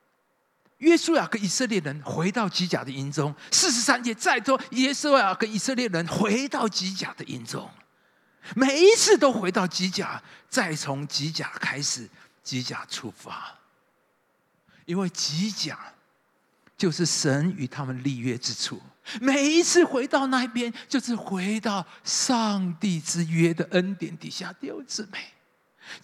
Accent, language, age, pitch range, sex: native, Chinese, 50-69, 180-255 Hz, male